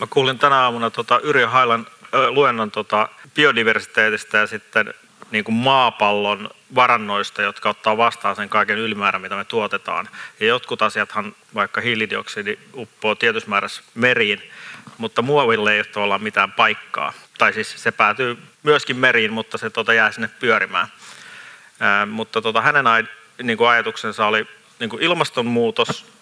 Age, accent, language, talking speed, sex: 30-49, native, Finnish, 115 wpm, male